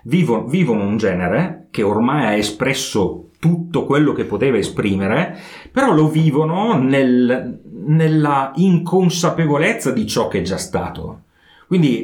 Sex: male